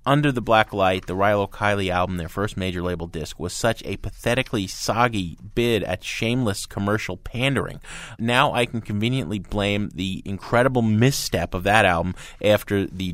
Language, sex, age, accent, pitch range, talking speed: English, male, 30-49, American, 95-120 Hz, 165 wpm